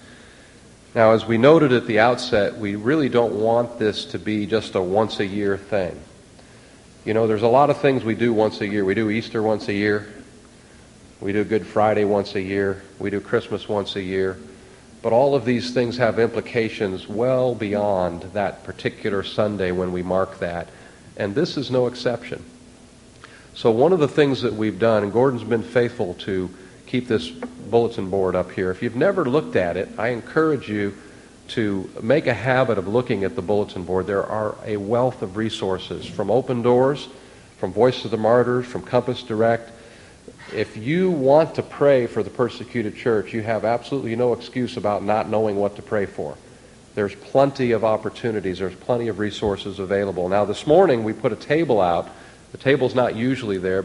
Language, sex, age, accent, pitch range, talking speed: English, male, 50-69, American, 100-125 Hz, 190 wpm